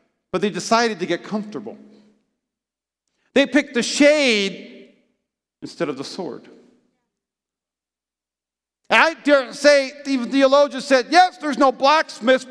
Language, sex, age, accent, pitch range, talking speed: English, male, 40-59, American, 210-285 Hz, 115 wpm